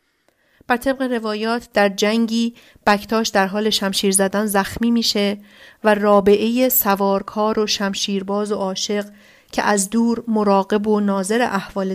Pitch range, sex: 195-220 Hz, female